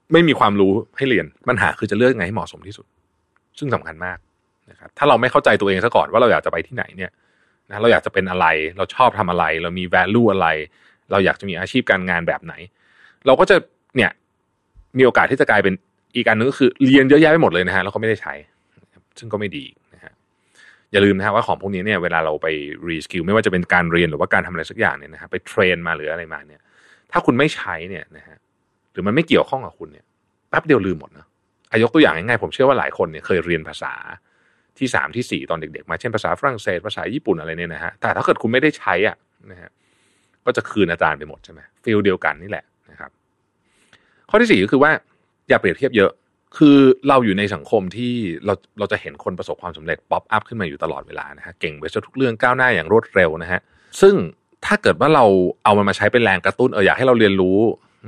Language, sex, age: Thai, male, 30-49